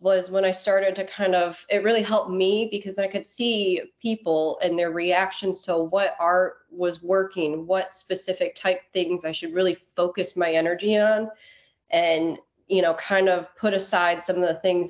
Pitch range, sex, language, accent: 170-200 Hz, female, English, American